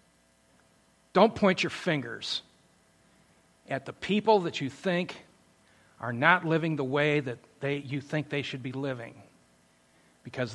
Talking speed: 135 wpm